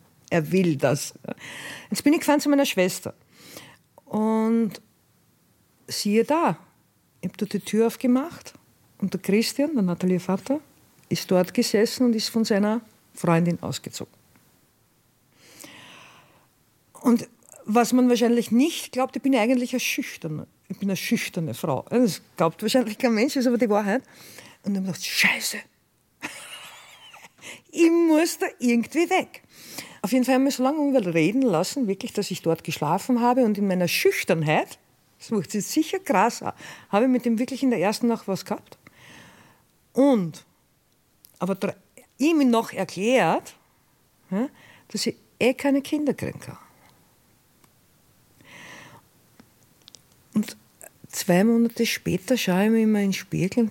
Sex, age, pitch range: female, 50-69, 190-255 Hz